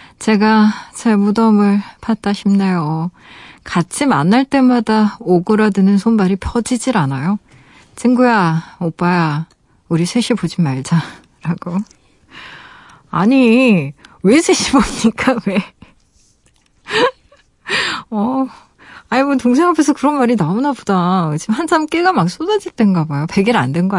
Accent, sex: native, female